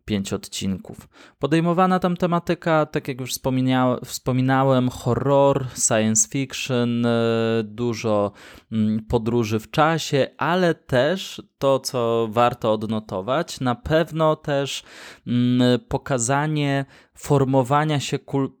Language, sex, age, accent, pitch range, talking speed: Polish, male, 20-39, native, 110-135 Hz, 95 wpm